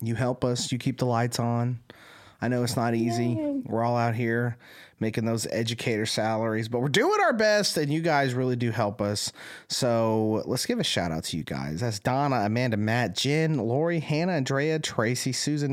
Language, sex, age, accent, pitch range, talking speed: English, male, 30-49, American, 110-155 Hz, 200 wpm